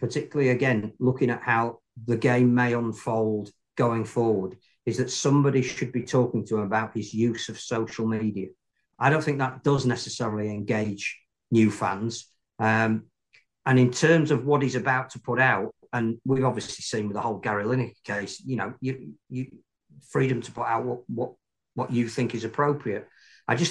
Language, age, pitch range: English, 50-69, 115-130 Hz